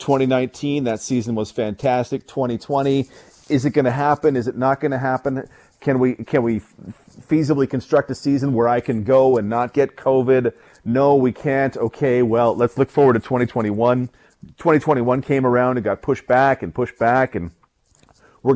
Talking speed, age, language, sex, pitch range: 180 wpm, 30-49, English, male, 115-135 Hz